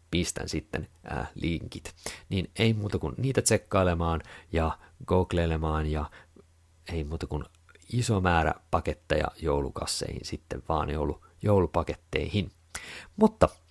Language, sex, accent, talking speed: Finnish, male, native, 100 wpm